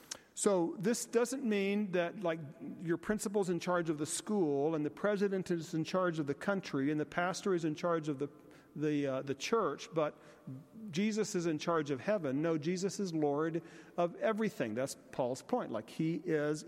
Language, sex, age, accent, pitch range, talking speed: English, male, 50-69, American, 150-195 Hz, 190 wpm